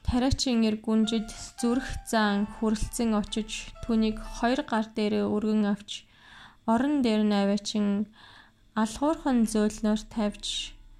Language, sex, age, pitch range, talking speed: English, female, 20-39, 210-235 Hz, 110 wpm